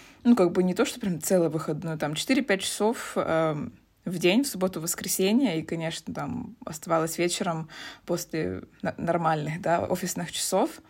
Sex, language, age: female, Russian, 20-39